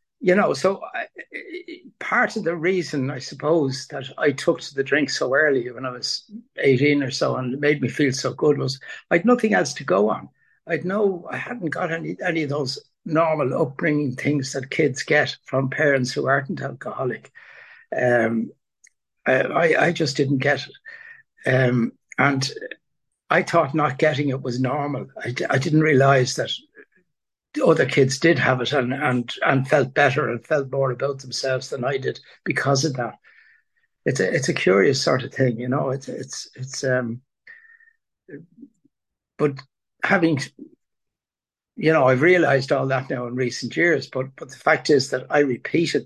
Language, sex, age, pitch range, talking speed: English, male, 60-79, 130-170 Hz, 175 wpm